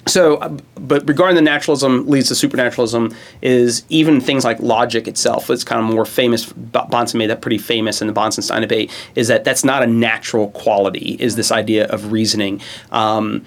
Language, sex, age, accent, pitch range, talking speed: English, male, 30-49, American, 115-135 Hz, 185 wpm